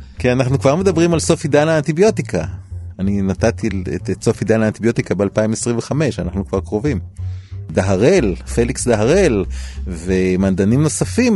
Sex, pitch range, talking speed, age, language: male, 105-145 Hz, 120 wpm, 30-49, Hebrew